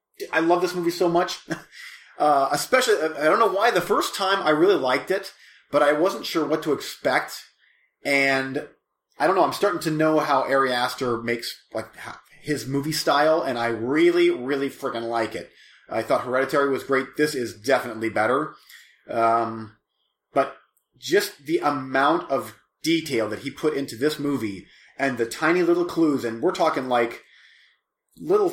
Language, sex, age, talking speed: English, male, 30-49, 170 wpm